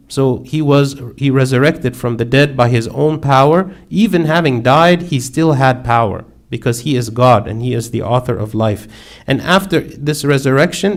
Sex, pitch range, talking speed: male, 115-135 Hz, 185 wpm